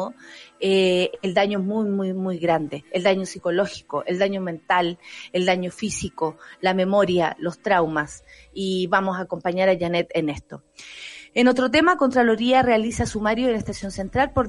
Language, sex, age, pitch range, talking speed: Spanish, female, 30-49, 185-230 Hz, 160 wpm